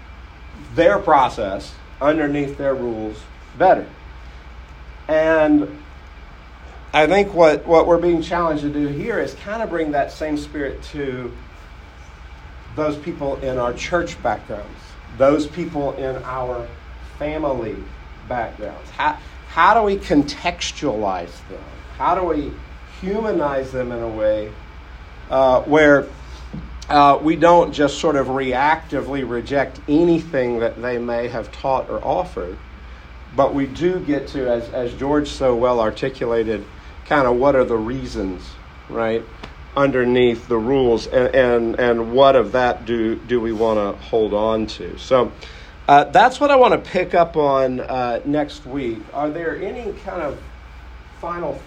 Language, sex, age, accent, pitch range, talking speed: English, male, 50-69, American, 90-145 Hz, 145 wpm